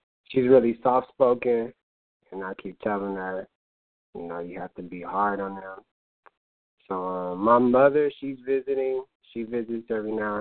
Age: 20-39